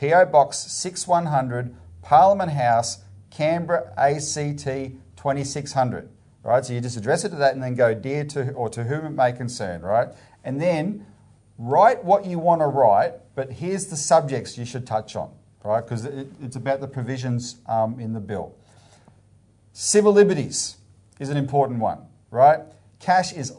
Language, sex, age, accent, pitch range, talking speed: English, male, 40-59, Australian, 120-160 Hz, 160 wpm